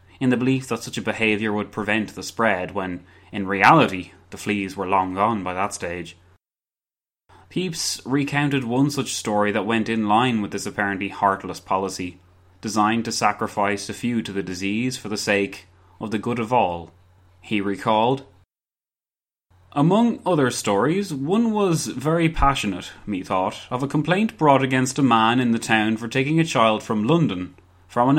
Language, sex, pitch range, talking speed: English, male, 95-130 Hz, 170 wpm